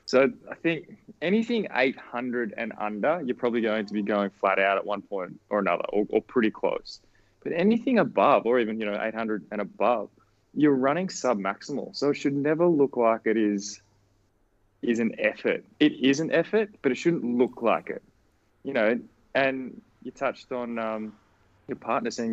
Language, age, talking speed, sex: English, 20-39, 185 wpm, male